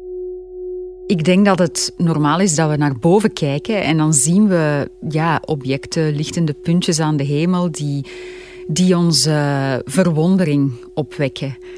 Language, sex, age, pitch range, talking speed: Dutch, female, 30-49, 150-195 Hz, 140 wpm